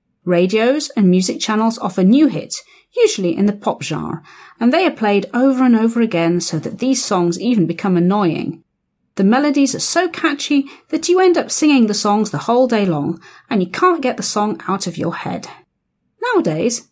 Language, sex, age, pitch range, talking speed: Slovak, female, 40-59, 175-275 Hz, 190 wpm